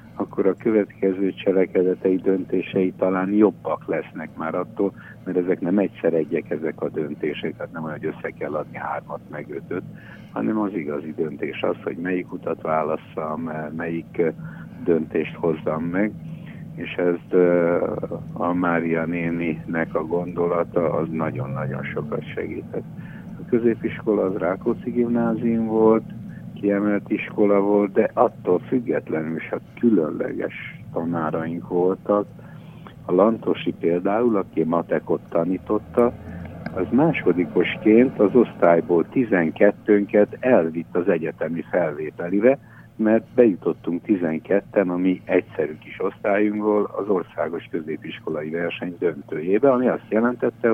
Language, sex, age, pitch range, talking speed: Hungarian, male, 60-79, 85-110 Hz, 115 wpm